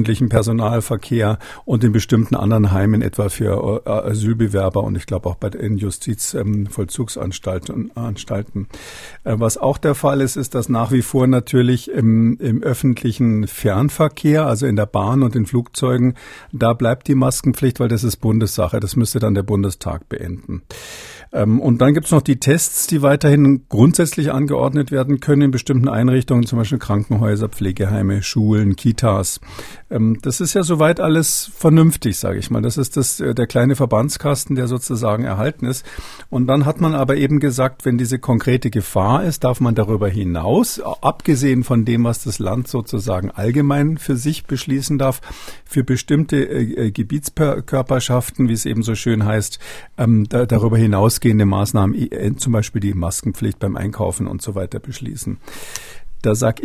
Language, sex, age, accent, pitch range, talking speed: German, male, 50-69, German, 105-135 Hz, 155 wpm